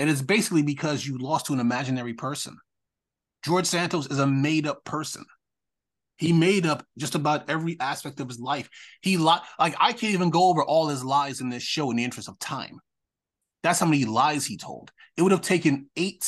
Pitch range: 125-160 Hz